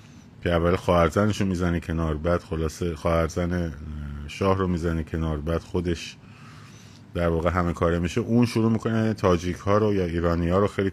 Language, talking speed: Persian, 170 wpm